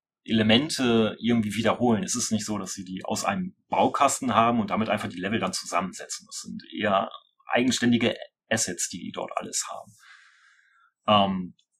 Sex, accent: male, German